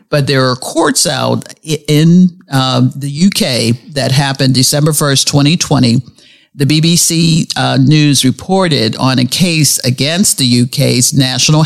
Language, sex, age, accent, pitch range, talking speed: English, male, 50-69, American, 130-170 Hz, 135 wpm